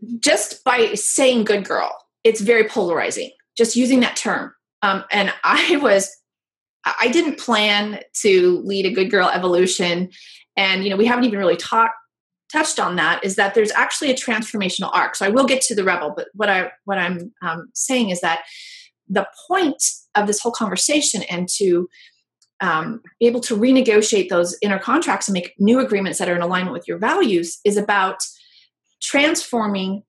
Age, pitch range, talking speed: 30-49, 190-255 Hz, 180 wpm